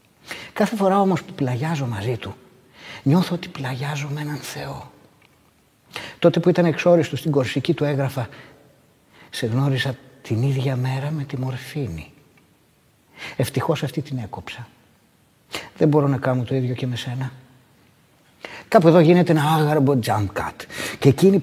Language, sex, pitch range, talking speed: Greek, male, 125-150 Hz, 145 wpm